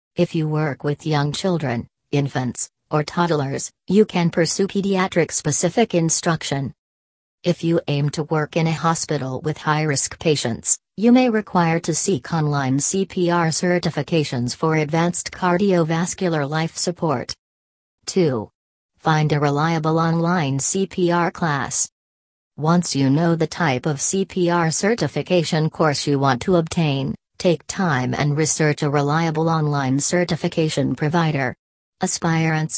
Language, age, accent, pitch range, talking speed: English, 40-59, American, 145-175 Hz, 125 wpm